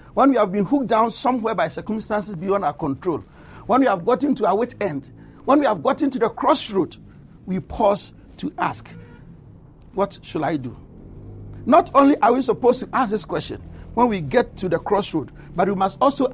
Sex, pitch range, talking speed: male, 175-245 Hz, 200 wpm